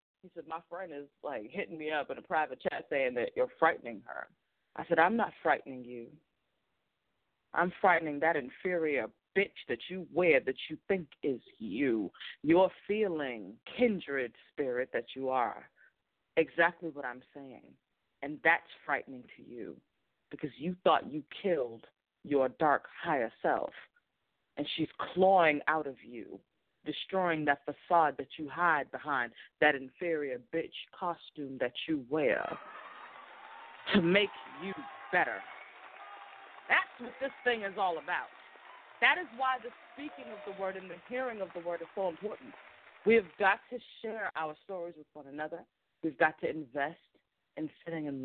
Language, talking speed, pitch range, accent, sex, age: English, 160 wpm, 145-190 Hz, American, female, 30-49